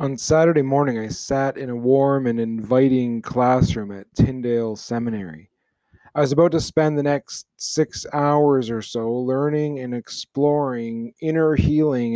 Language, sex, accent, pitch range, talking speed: English, male, American, 115-140 Hz, 150 wpm